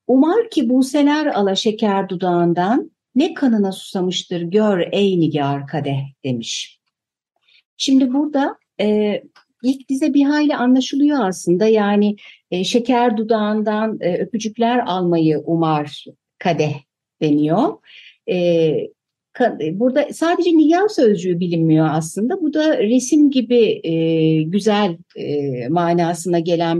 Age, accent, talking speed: 60-79, native, 115 wpm